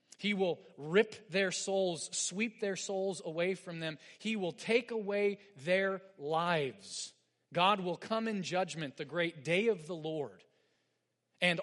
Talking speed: 150 wpm